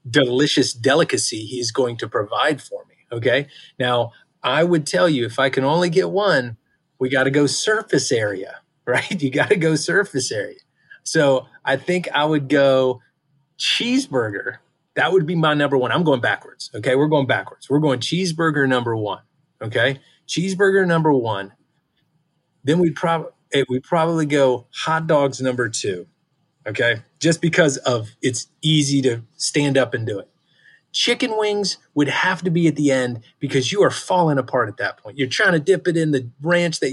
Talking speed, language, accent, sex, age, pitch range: 180 wpm, English, American, male, 30-49, 130-160 Hz